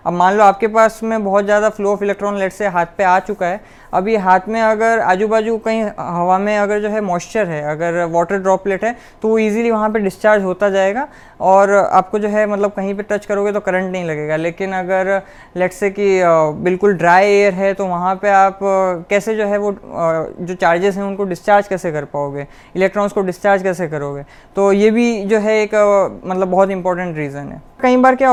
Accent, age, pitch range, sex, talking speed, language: native, 20-39, 185-225 Hz, female, 210 wpm, Hindi